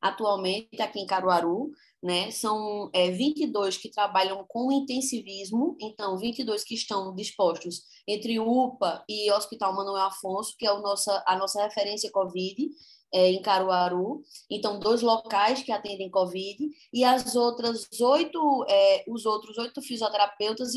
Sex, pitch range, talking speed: female, 205-255 Hz, 140 wpm